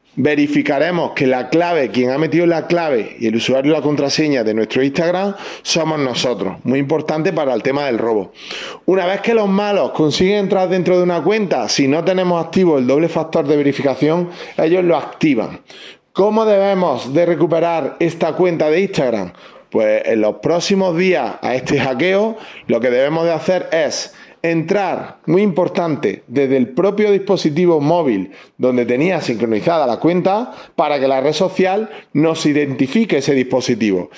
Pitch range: 135-185 Hz